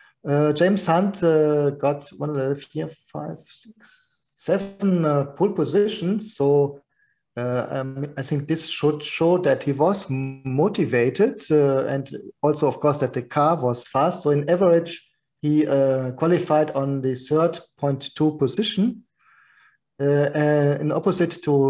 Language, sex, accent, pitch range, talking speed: English, male, German, 135-160 Hz, 130 wpm